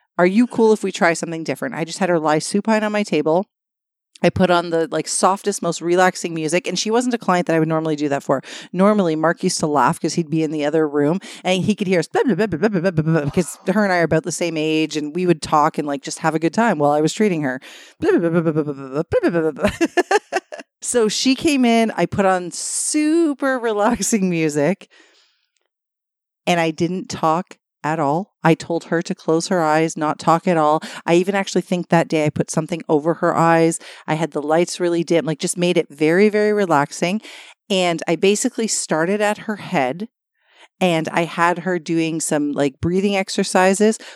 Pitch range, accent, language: 160-205 Hz, American, English